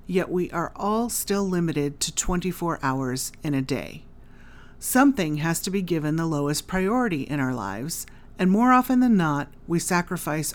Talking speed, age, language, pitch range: 170 wpm, 40-59, English, 145-200 Hz